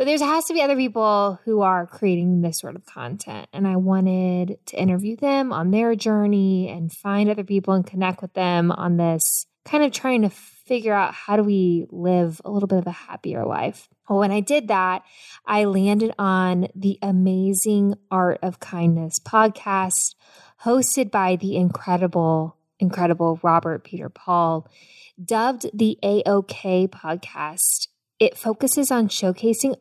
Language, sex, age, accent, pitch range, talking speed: English, female, 10-29, American, 175-215 Hz, 160 wpm